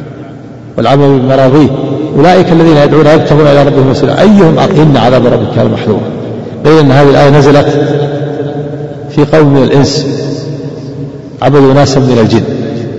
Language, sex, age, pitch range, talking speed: Arabic, male, 50-69, 125-145 Hz, 130 wpm